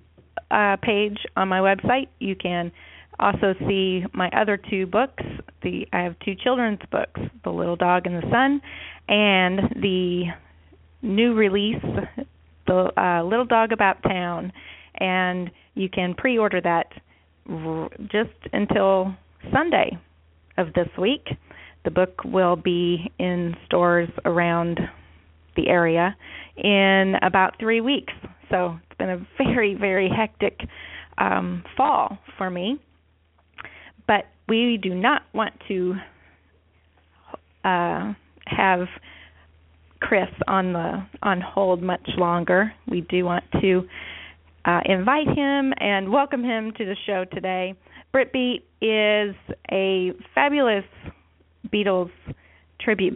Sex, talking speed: female, 120 wpm